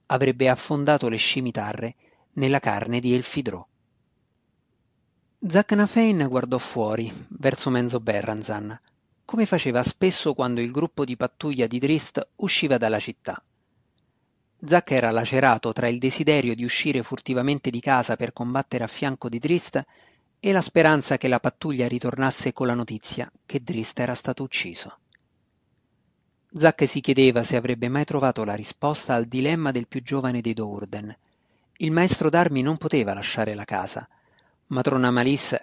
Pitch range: 115-150 Hz